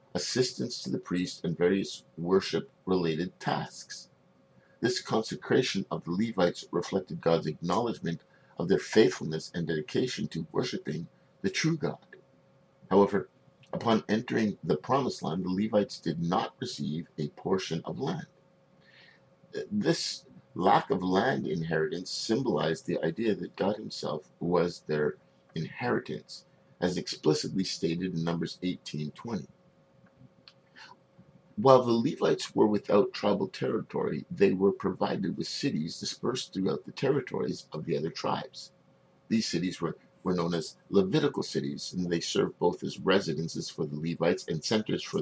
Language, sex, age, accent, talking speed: English, male, 50-69, American, 135 wpm